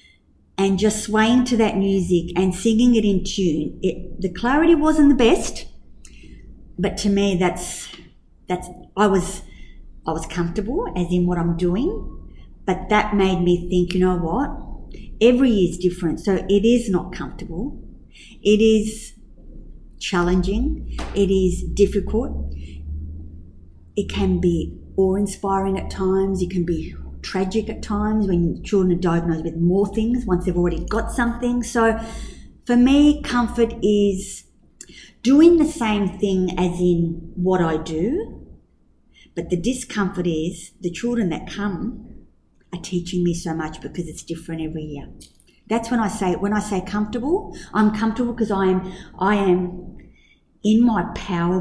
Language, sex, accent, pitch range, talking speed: English, female, Australian, 170-215 Hz, 150 wpm